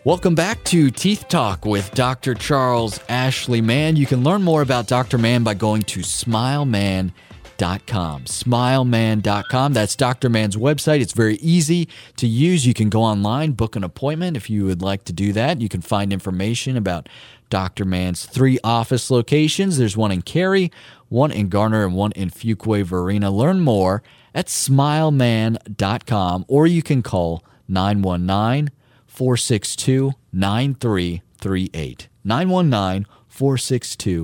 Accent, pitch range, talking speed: American, 100-135 Hz, 135 wpm